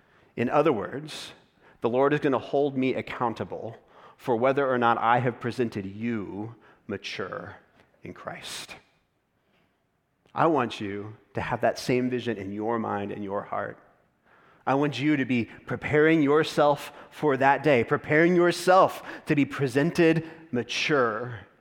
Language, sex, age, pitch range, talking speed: English, male, 30-49, 105-135 Hz, 140 wpm